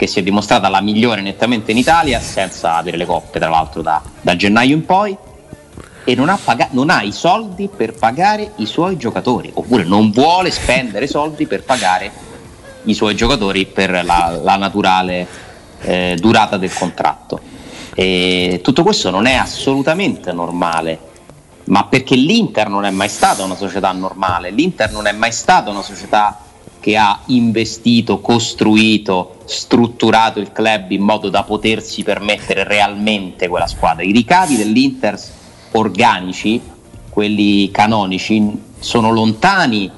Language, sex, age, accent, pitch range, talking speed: Italian, male, 30-49, native, 95-115 Hz, 145 wpm